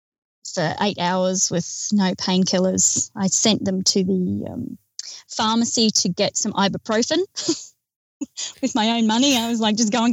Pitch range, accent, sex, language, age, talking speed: 190-230 Hz, Australian, female, English, 20-39, 160 wpm